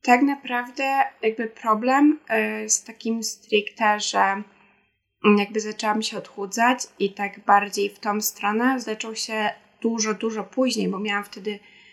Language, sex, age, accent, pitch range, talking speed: Polish, female, 20-39, native, 205-230 Hz, 130 wpm